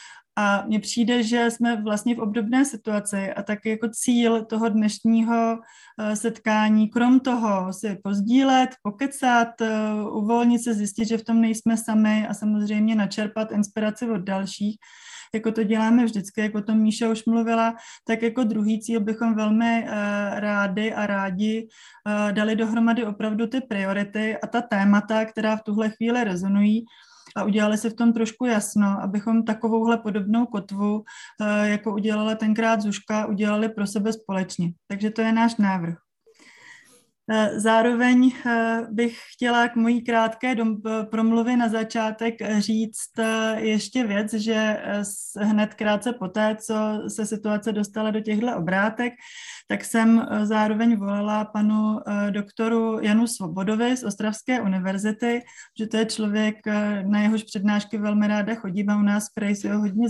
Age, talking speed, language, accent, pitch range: 20-39, 140 wpm, Czech, native, 210-230 Hz